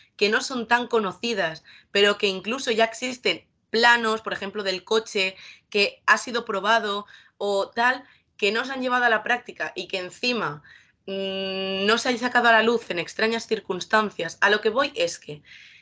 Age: 20-39